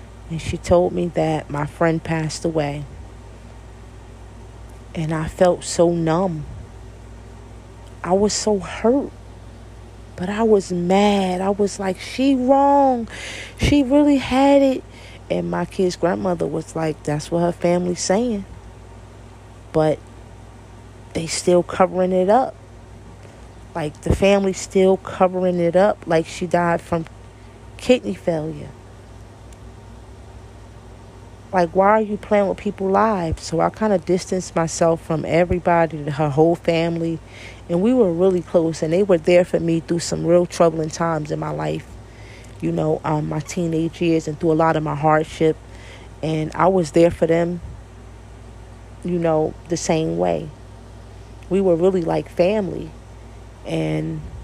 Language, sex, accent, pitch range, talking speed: English, female, American, 115-180 Hz, 140 wpm